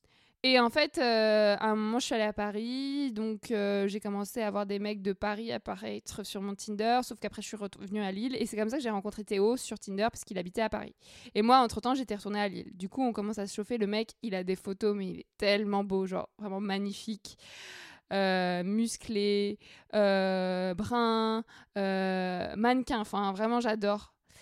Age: 20-39